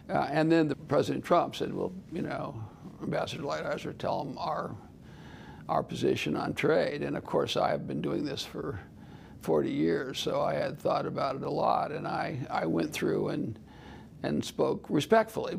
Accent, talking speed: American, 180 wpm